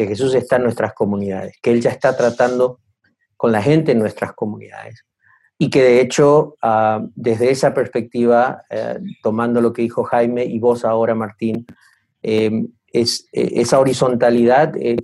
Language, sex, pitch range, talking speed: Spanish, male, 110-130 Hz, 160 wpm